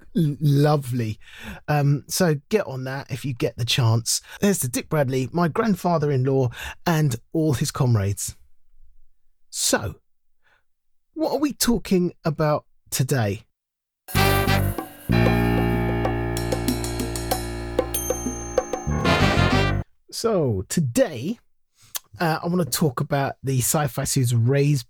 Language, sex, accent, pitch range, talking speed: English, male, British, 125-180 Hz, 95 wpm